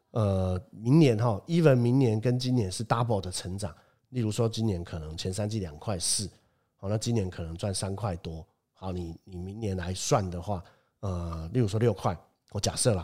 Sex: male